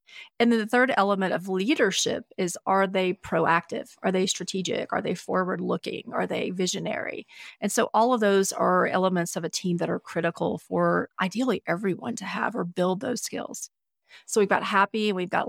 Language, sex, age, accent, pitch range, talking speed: English, female, 30-49, American, 180-210 Hz, 190 wpm